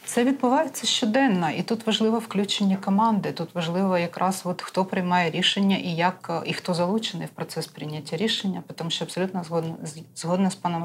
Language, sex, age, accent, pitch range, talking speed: Russian, female, 30-49, native, 165-190 Hz, 170 wpm